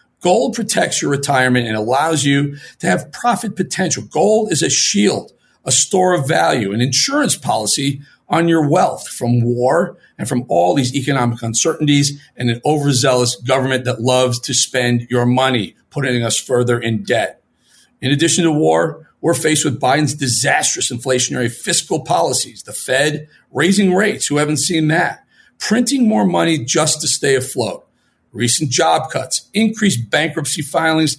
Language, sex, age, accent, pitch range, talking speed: English, male, 40-59, American, 125-170 Hz, 155 wpm